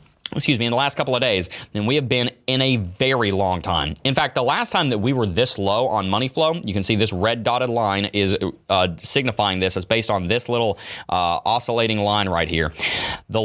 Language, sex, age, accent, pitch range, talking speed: English, male, 30-49, American, 105-150 Hz, 230 wpm